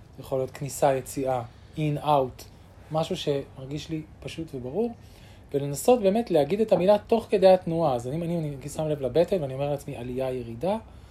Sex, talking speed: male, 175 wpm